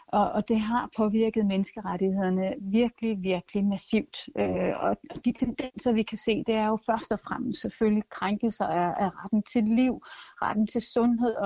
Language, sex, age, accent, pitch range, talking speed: Danish, female, 30-49, native, 195-240 Hz, 150 wpm